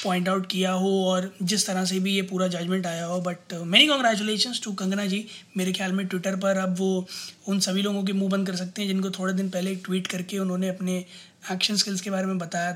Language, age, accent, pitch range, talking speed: Hindi, 20-39, native, 190-220 Hz, 235 wpm